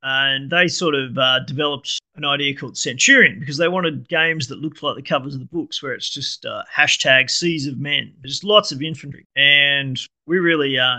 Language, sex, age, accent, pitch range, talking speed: English, male, 30-49, Australian, 140-160 Hz, 210 wpm